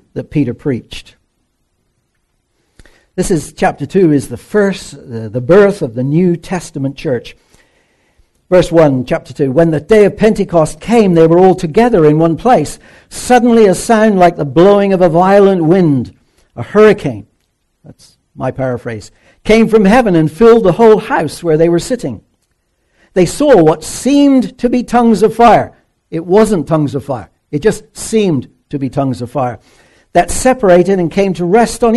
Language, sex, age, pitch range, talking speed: English, male, 60-79, 140-205 Hz, 170 wpm